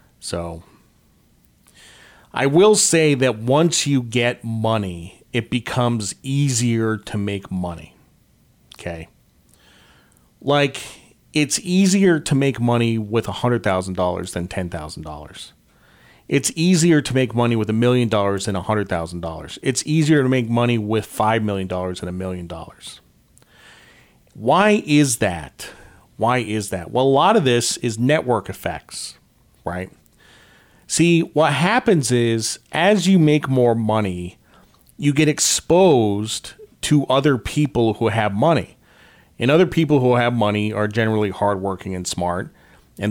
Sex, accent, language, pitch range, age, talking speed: male, American, English, 100-140 Hz, 40-59, 130 wpm